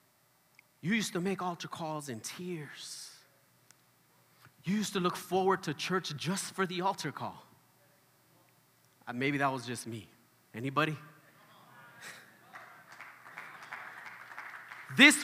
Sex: male